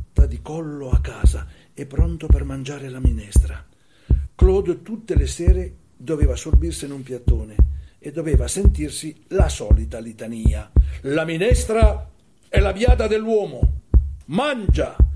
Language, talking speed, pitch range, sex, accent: Italian, 125 wpm, 105-150 Hz, male, native